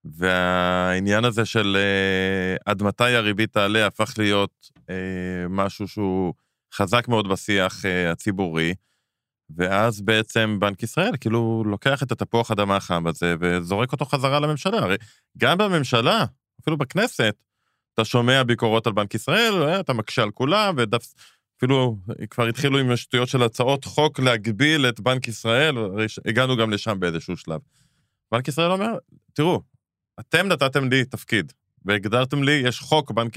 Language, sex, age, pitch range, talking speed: Hebrew, male, 20-39, 100-135 Hz, 140 wpm